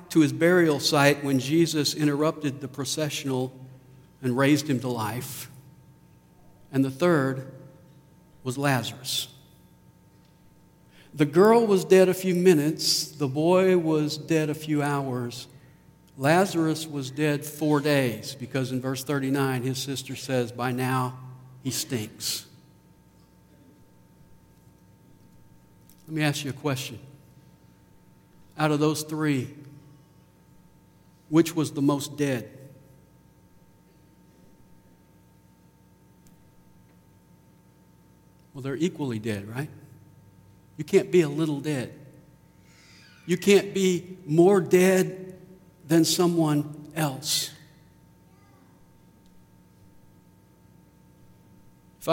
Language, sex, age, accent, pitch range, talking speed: English, male, 60-79, American, 100-155 Hz, 95 wpm